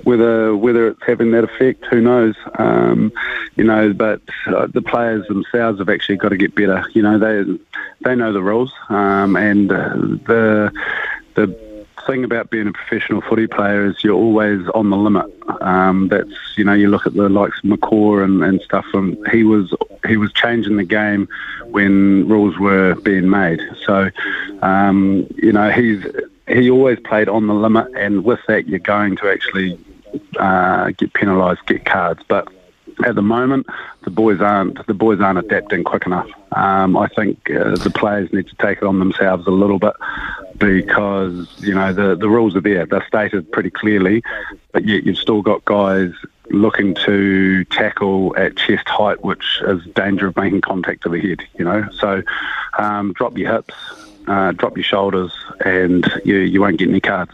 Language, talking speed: English, 180 wpm